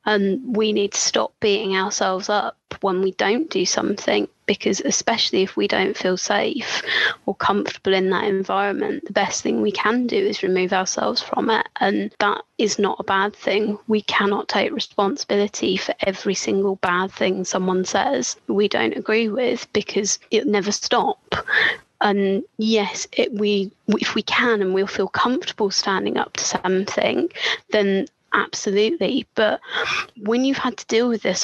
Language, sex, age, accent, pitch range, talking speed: English, female, 20-39, British, 195-220 Hz, 160 wpm